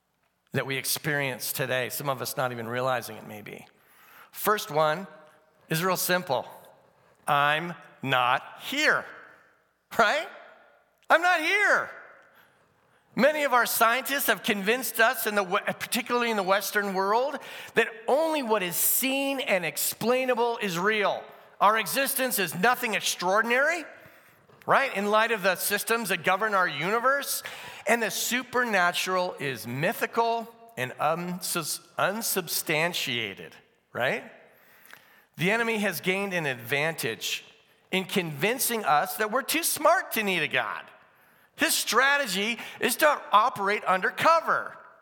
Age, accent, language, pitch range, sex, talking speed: 50-69, American, English, 155-235 Hz, male, 120 wpm